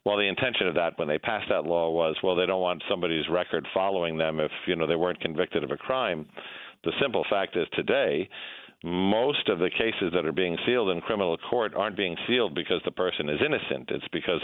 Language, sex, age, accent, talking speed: English, male, 50-69, American, 225 wpm